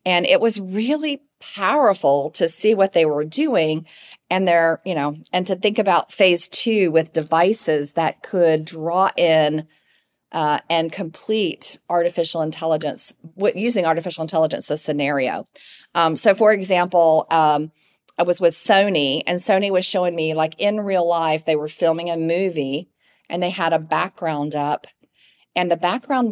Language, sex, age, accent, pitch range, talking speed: English, female, 40-59, American, 160-195 Hz, 155 wpm